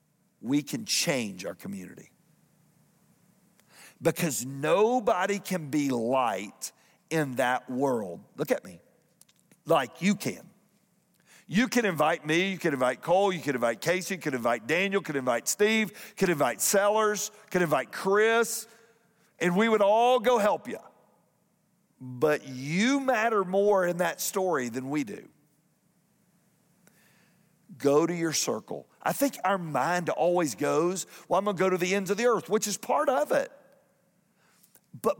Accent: American